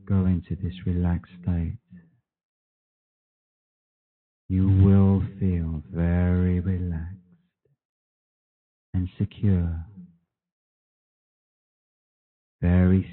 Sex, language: male, English